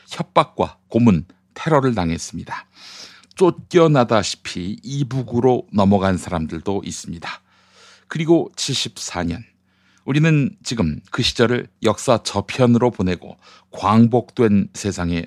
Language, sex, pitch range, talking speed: English, male, 95-130 Hz, 80 wpm